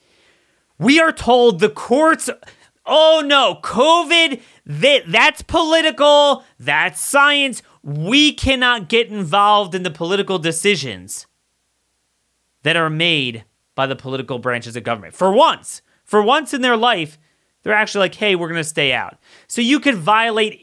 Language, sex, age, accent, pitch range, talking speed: English, male, 30-49, American, 160-255 Hz, 145 wpm